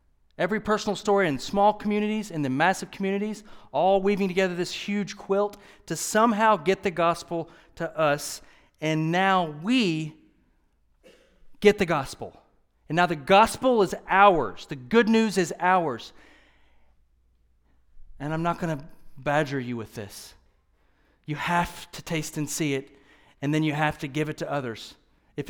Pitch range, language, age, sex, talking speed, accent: 150-195 Hz, English, 40-59, male, 155 wpm, American